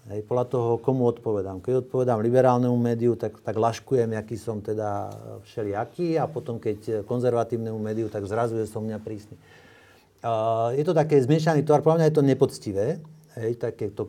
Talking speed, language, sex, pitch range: 160 wpm, Slovak, male, 110-140 Hz